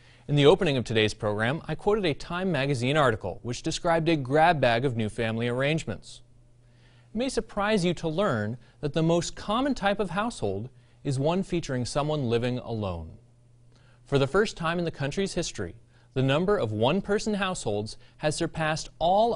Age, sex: 30-49, male